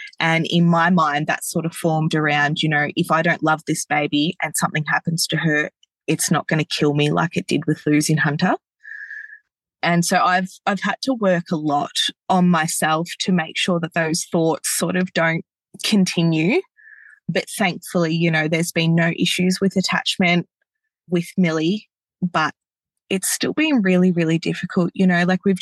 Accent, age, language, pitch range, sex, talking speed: Australian, 20-39, English, 160-185 Hz, female, 185 wpm